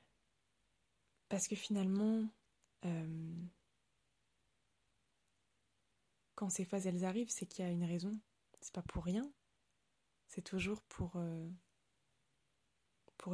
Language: French